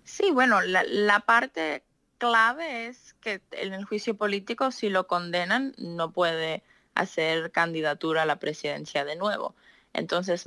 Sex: female